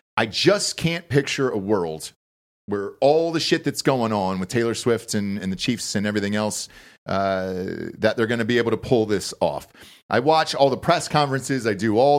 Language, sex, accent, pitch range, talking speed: English, male, American, 110-145 Hz, 210 wpm